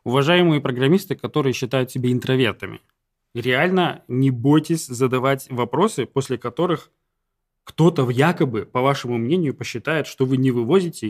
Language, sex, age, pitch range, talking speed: Russian, male, 20-39, 135-175 Hz, 125 wpm